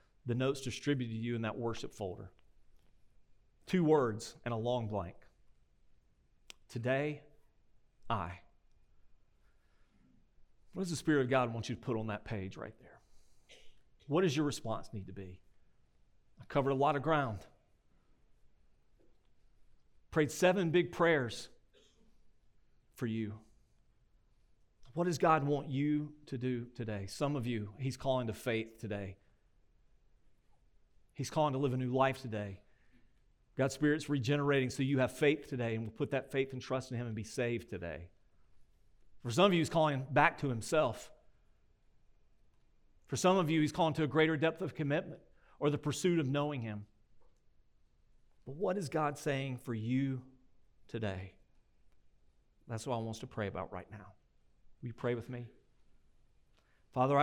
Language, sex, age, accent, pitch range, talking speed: English, male, 40-59, American, 110-145 Hz, 155 wpm